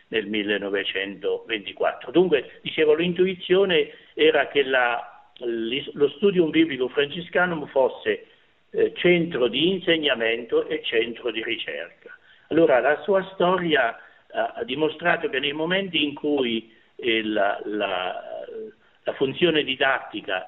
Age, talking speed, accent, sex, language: 60-79, 110 wpm, native, male, Italian